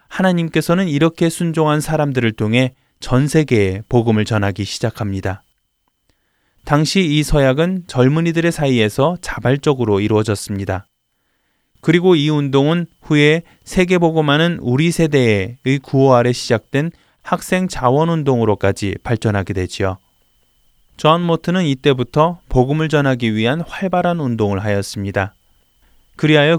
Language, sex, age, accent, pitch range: Korean, male, 20-39, native, 115-165 Hz